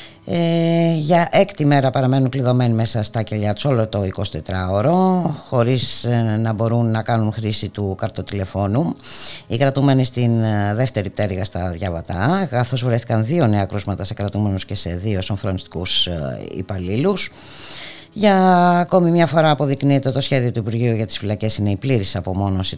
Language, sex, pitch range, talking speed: Greek, female, 105-140 Hz, 150 wpm